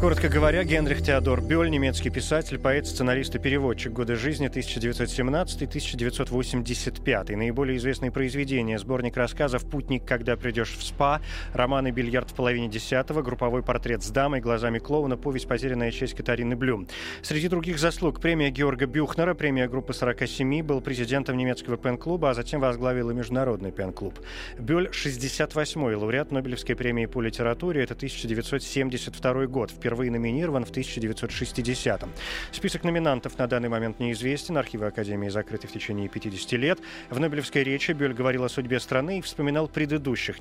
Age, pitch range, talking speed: 30-49, 120-140 Hz, 145 wpm